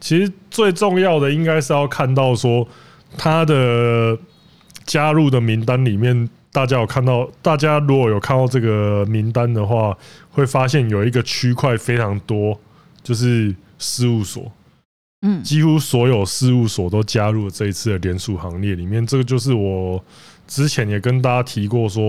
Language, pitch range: Chinese, 110-140 Hz